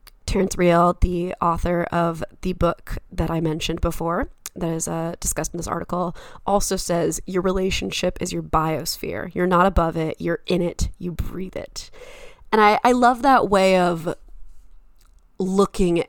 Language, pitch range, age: English, 160-190 Hz, 20-39